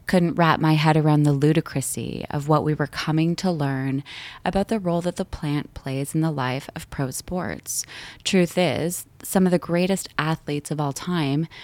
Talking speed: 190 wpm